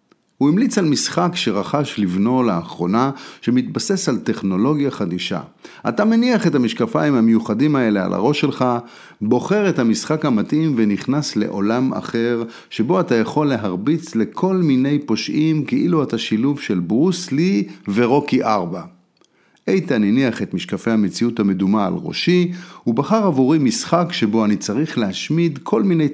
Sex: male